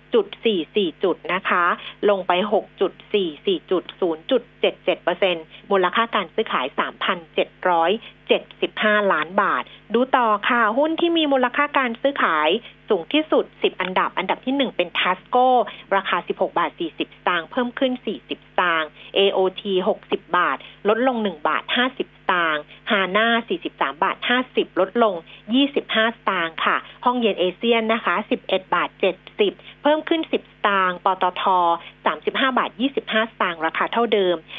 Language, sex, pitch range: Thai, female, 190-265 Hz